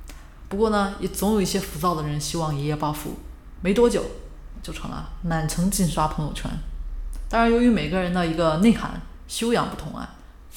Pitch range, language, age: 150-195 Hz, Chinese, 20-39